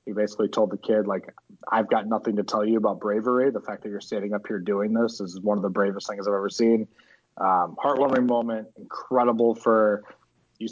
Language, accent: English, American